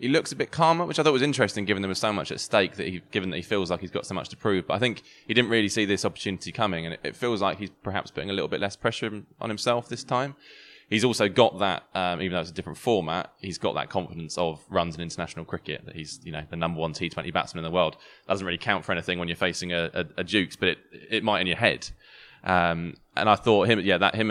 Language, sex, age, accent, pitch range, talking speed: English, male, 20-39, British, 90-110 Hz, 285 wpm